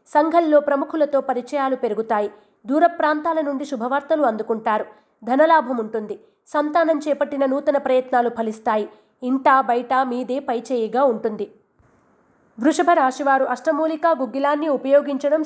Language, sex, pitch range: Telugu, female, 245-300 Hz